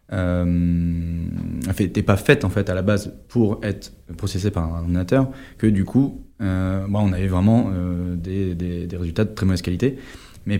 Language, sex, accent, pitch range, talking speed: French, male, French, 90-115 Hz, 185 wpm